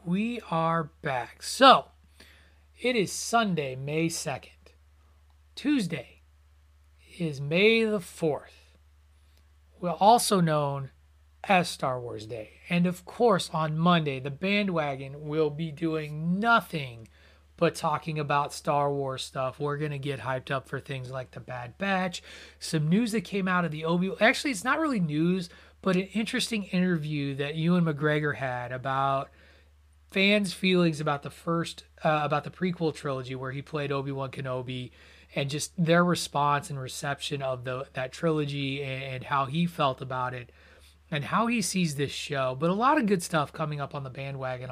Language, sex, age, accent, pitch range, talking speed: English, male, 30-49, American, 125-175 Hz, 160 wpm